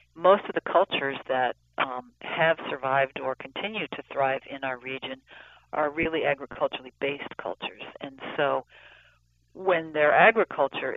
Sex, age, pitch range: female, 50-69, 135-165 Hz